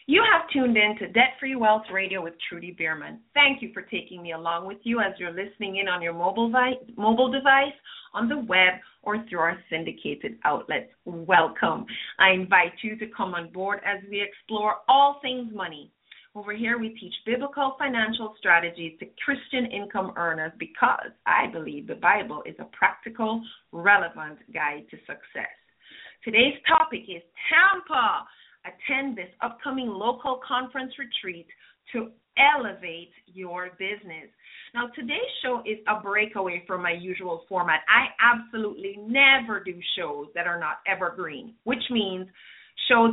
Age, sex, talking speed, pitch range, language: 30-49, female, 155 wpm, 180-250 Hz, English